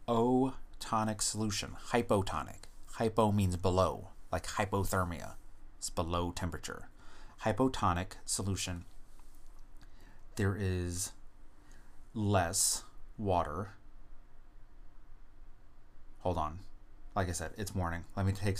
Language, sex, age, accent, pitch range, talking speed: English, male, 30-49, American, 90-105 Hz, 90 wpm